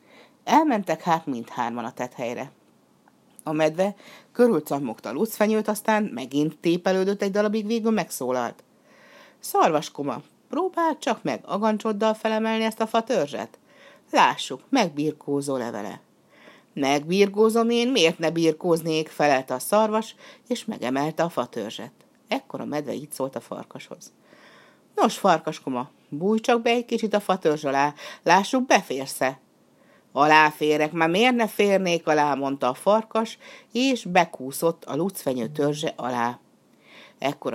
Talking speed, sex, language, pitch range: 125 wpm, female, Hungarian, 135-225 Hz